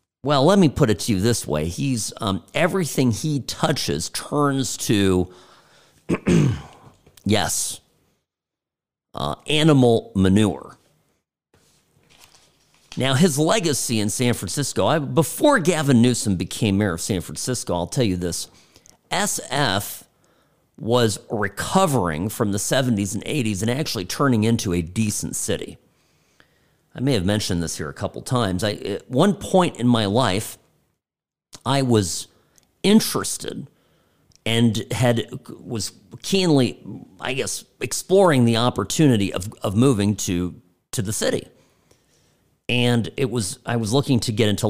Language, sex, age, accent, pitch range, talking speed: English, male, 50-69, American, 95-135 Hz, 130 wpm